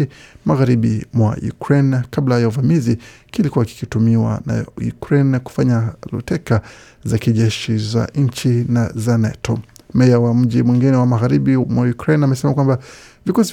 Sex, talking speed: male, 135 wpm